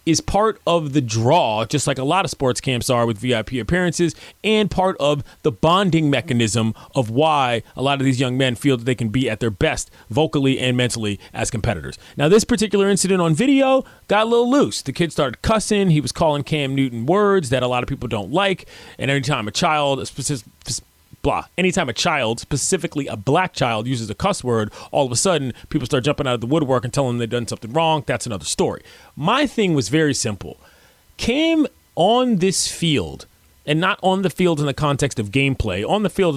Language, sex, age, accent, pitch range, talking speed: English, male, 30-49, American, 125-185 Hz, 220 wpm